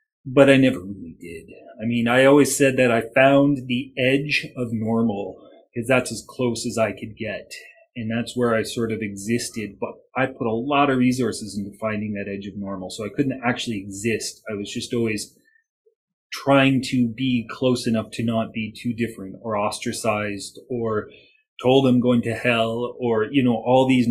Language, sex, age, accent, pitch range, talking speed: English, male, 30-49, Canadian, 110-135 Hz, 190 wpm